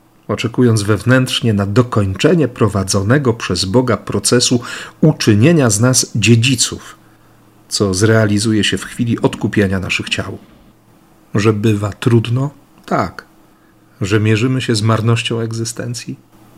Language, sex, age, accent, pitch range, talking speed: Polish, male, 40-59, native, 105-125 Hz, 110 wpm